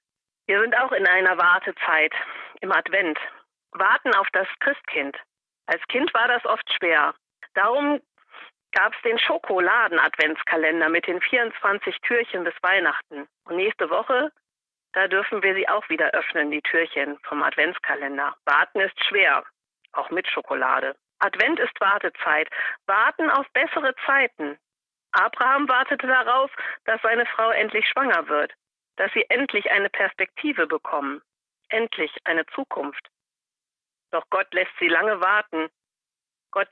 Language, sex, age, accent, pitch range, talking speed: German, female, 40-59, German, 185-265 Hz, 130 wpm